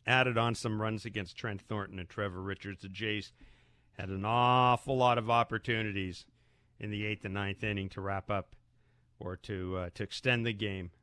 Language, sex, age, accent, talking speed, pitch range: English, male, 50-69, American, 185 wpm, 100-130 Hz